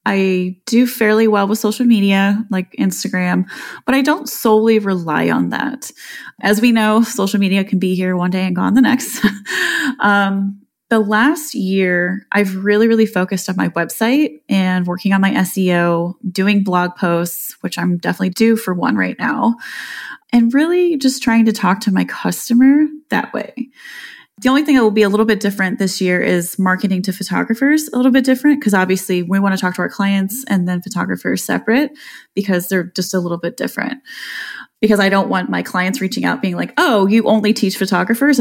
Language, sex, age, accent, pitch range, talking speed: English, female, 20-39, American, 185-235 Hz, 190 wpm